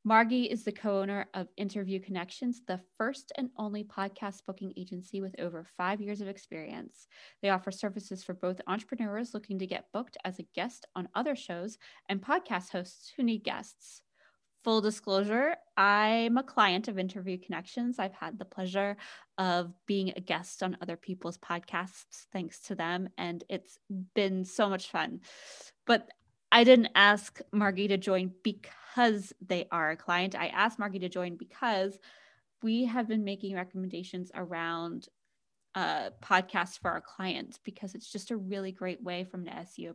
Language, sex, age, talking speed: English, female, 20-39, 165 wpm